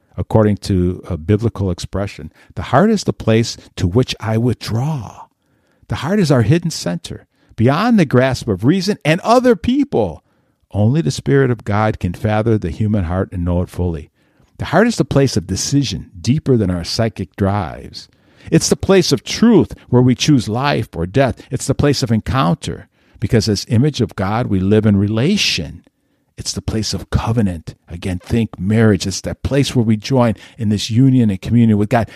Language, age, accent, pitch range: English, 50-69, American, 95-125 Hz